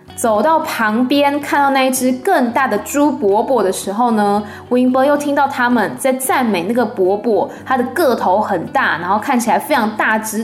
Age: 20-39